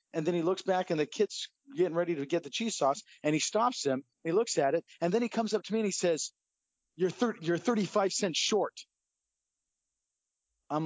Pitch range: 155-220 Hz